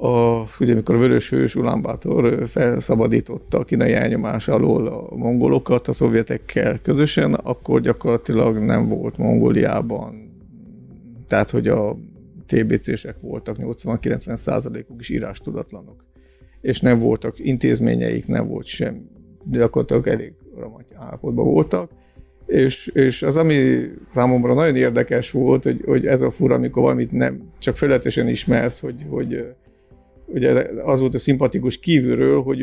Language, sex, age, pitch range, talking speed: Hungarian, male, 50-69, 85-135 Hz, 125 wpm